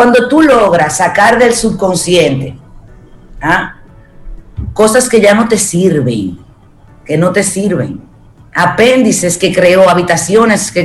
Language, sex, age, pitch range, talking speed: Spanish, female, 40-59, 155-205 Hz, 120 wpm